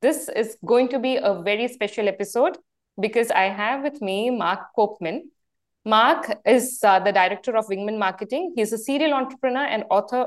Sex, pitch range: female, 190-250 Hz